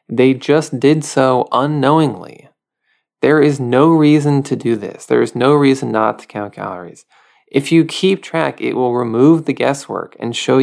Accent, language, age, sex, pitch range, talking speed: American, English, 20-39, male, 110-150 Hz, 175 wpm